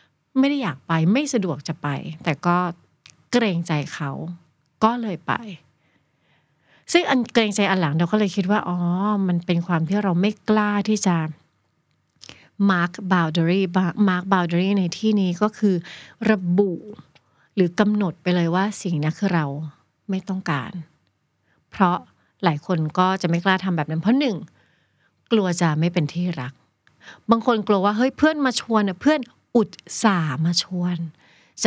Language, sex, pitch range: Thai, female, 170-215 Hz